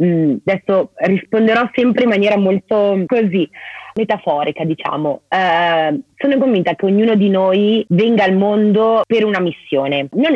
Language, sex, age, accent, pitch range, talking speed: Italian, female, 30-49, native, 165-210 Hz, 140 wpm